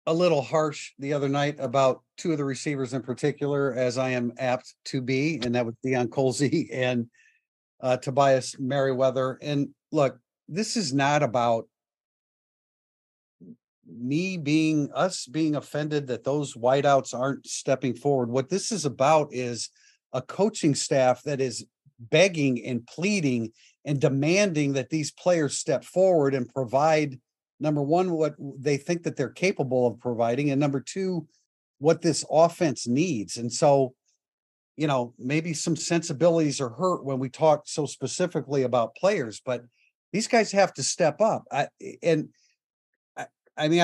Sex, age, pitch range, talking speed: male, 50-69, 130-160 Hz, 150 wpm